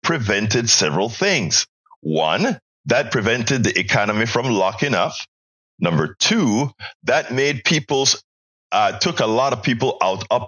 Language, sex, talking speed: English, male, 135 wpm